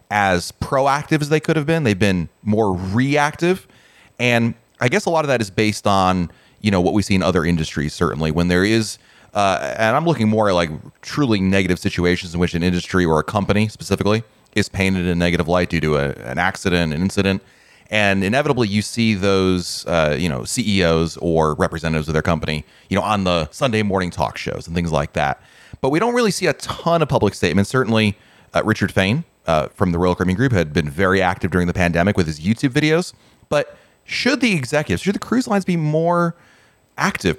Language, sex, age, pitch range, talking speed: English, male, 30-49, 90-135 Hz, 210 wpm